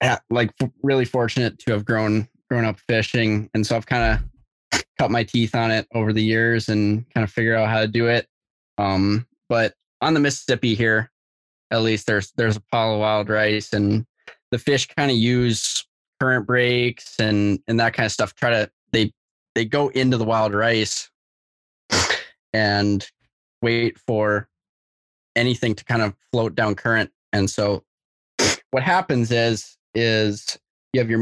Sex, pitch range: male, 105-120 Hz